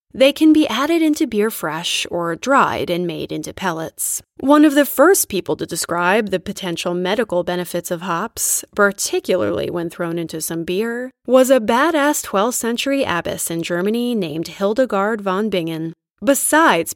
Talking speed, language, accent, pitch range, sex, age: 160 wpm, English, American, 175-275 Hz, female, 20-39